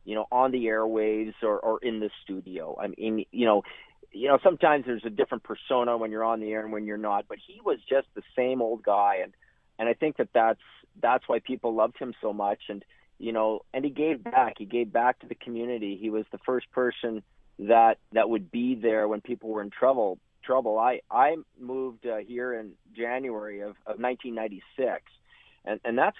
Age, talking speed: 40-59, 215 wpm